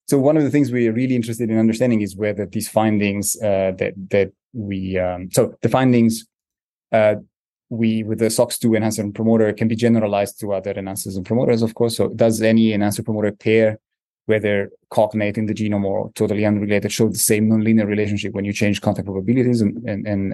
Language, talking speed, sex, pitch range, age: English, 200 wpm, male, 100-115 Hz, 20-39